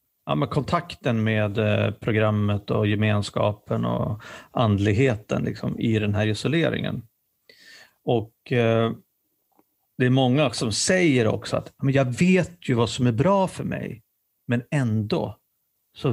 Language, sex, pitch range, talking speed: Swedish, male, 105-125 Hz, 115 wpm